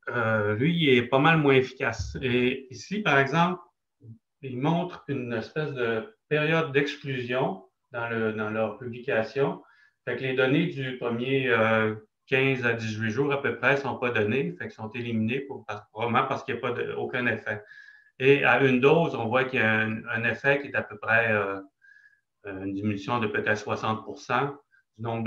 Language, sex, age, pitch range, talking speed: French, male, 30-49, 115-145 Hz, 190 wpm